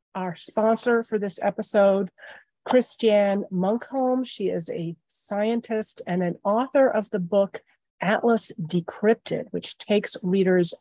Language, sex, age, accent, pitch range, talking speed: English, female, 40-59, American, 180-220 Hz, 120 wpm